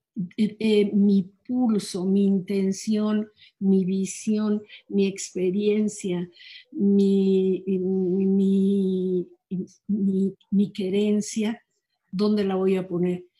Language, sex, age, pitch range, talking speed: Spanish, female, 50-69, 185-215 Hz, 95 wpm